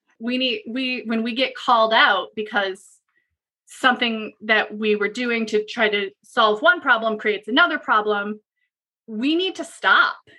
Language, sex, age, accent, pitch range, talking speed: English, female, 20-39, American, 205-245 Hz, 155 wpm